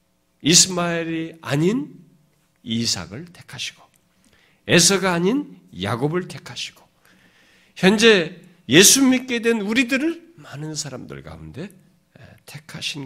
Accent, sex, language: native, male, Korean